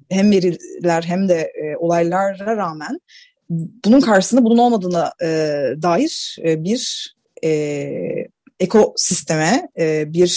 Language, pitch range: Turkish, 165-205 Hz